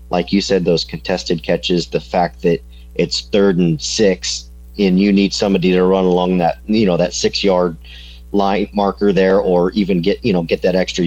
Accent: American